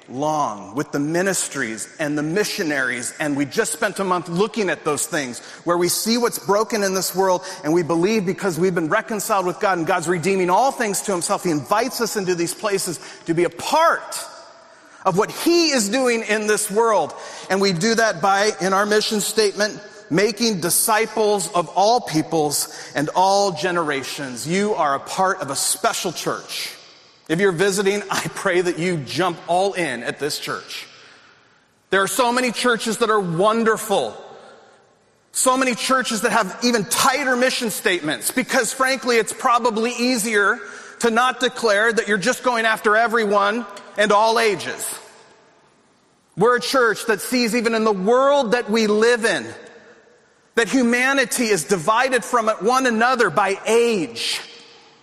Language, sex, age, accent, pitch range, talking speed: English, male, 40-59, American, 185-235 Hz, 165 wpm